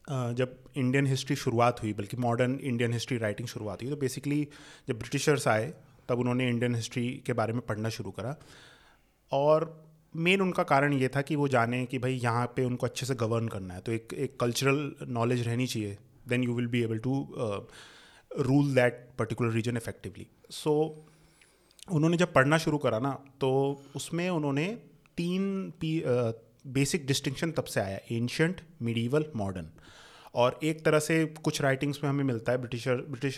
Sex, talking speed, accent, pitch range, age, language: male, 175 wpm, native, 120-155 Hz, 20-39, Hindi